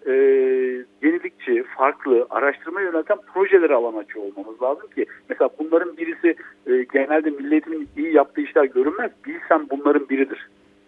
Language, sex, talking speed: Turkish, male, 130 wpm